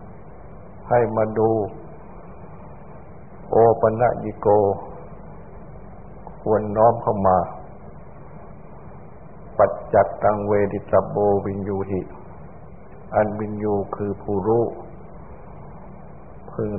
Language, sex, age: Thai, male, 60-79